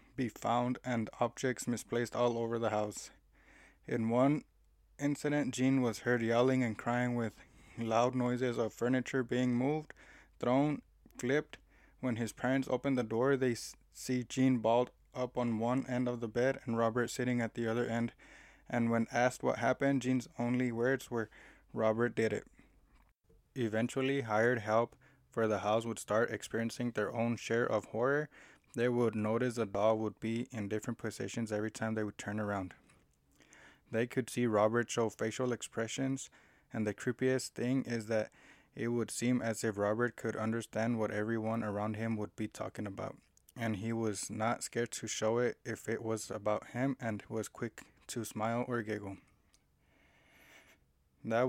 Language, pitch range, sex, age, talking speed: English, 110-125 Hz, male, 20-39, 165 wpm